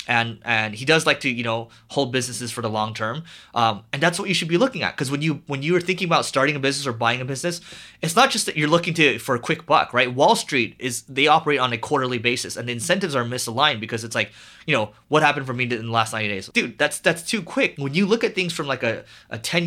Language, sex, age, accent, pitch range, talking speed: English, male, 30-49, American, 120-165 Hz, 285 wpm